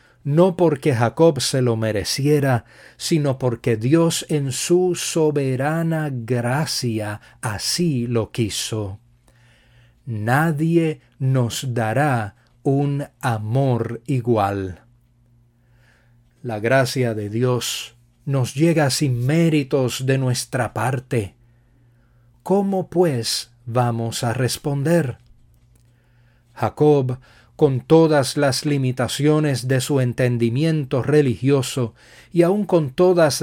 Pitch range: 120-145 Hz